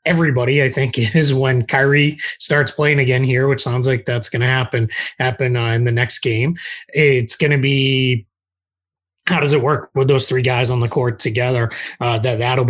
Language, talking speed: English, 200 wpm